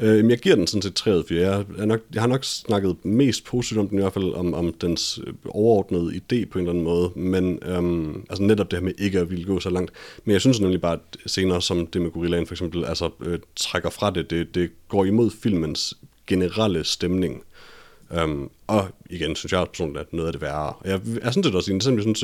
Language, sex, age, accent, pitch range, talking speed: Danish, male, 30-49, native, 85-105 Hz, 240 wpm